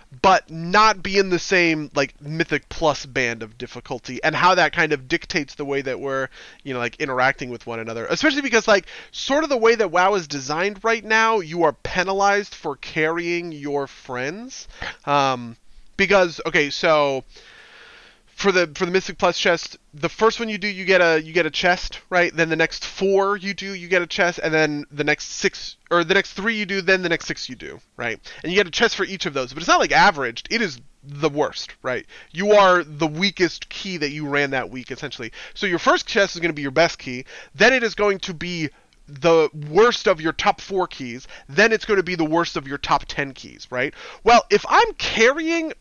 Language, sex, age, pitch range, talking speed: English, male, 20-39, 145-195 Hz, 225 wpm